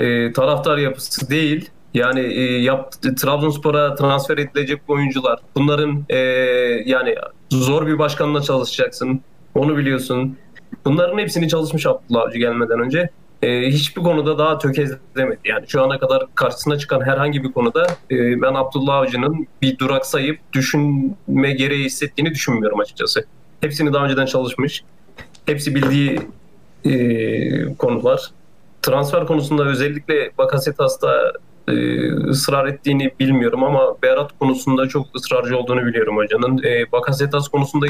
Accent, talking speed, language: native, 125 wpm, Turkish